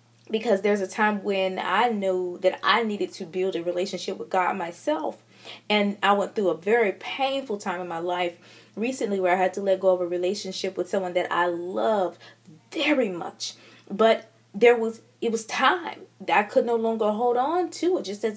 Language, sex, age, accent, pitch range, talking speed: English, female, 20-39, American, 180-230 Hz, 205 wpm